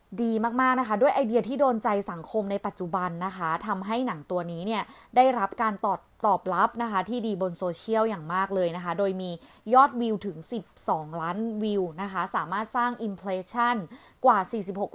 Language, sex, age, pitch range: Thai, female, 20-39, 185-230 Hz